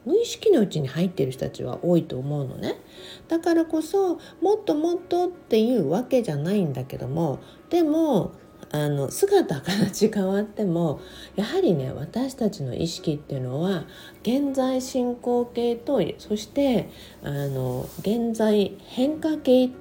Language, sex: Japanese, female